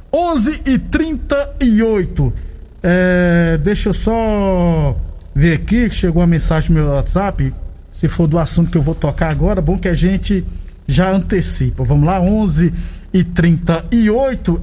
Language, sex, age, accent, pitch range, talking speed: Portuguese, male, 50-69, Brazilian, 165-205 Hz, 150 wpm